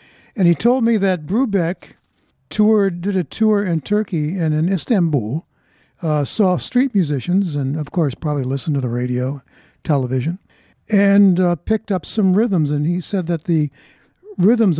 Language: English